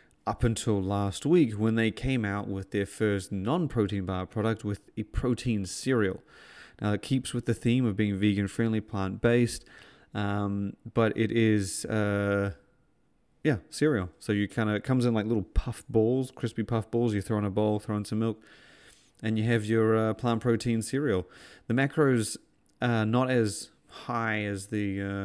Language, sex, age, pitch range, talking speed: English, male, 30-49, 100-115 Hz, 180 wpm